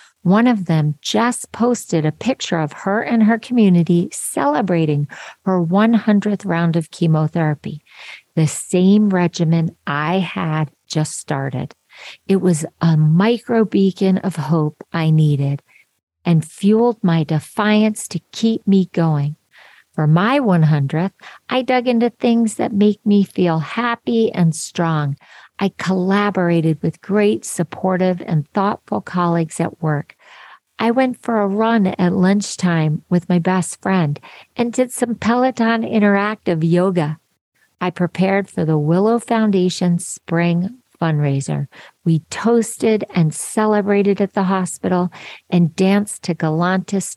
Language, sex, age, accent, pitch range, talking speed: English, female, 50-69, American, 165-210 Hz, 130 wpm